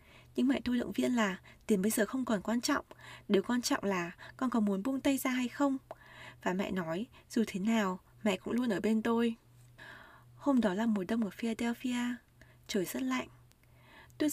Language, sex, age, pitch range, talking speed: Vietnamese, female, 20-39, 190-260 Hz, 200 wpm